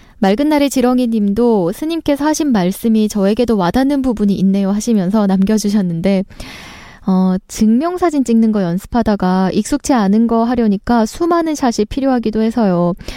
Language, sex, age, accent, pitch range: Korean, female, 20-39, native, 190-240 Hz